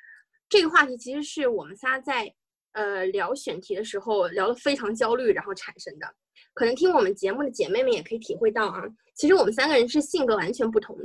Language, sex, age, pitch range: Chinese, female, 20-39, 255-430 Hz